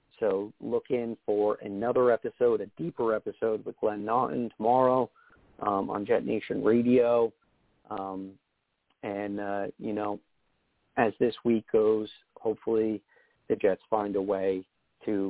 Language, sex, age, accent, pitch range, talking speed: English, male, 40-59, American, 100-120 Hz, 135 wpm